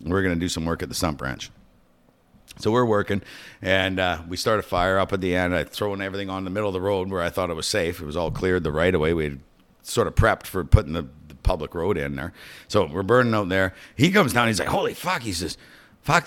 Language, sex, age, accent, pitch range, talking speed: English, male, 50-69, American, 95-120 Hz, 265 wpm